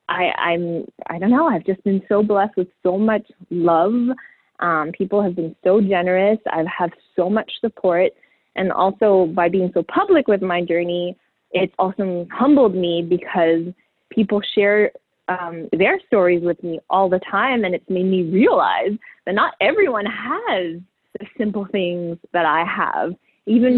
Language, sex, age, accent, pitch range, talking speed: English, female, 20-39, American, 175-225 Hz, 165 wpm